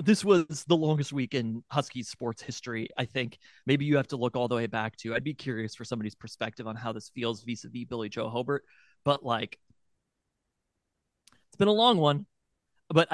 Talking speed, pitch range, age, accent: 195 wpm, 115-150 Hz, 30-49, American